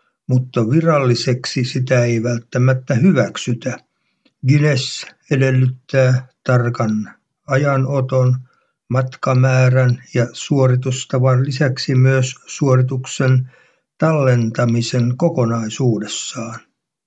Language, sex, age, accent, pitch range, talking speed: Finnish, male, 60-79, native, 125-140 Hz, 65 wpm